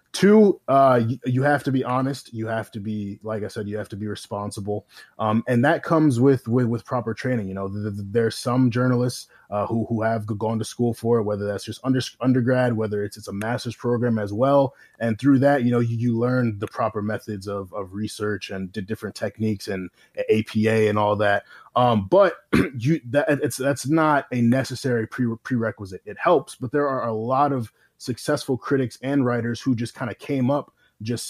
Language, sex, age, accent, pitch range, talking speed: English, male, 20-39, American, 105-130 Hz, 210 wpm